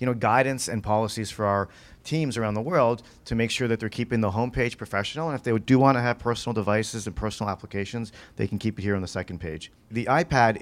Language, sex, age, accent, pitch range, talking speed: Italian, male, 40-59, American, 105-125 Hz, 245 wpm